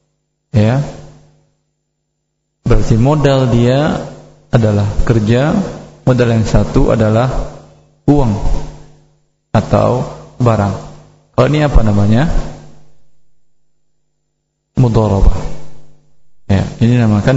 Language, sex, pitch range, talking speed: Indonesian, male, 110-140 Hz, 75 wpm